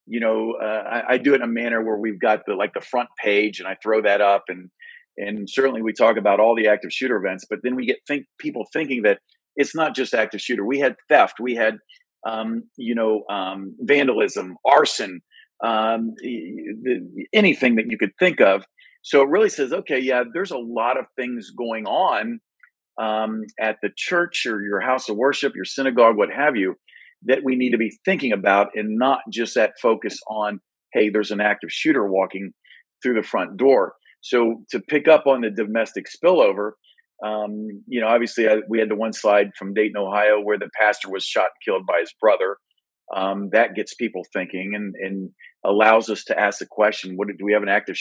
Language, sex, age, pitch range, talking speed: English, male, 40-59, 105-135 Hz, 205 wpm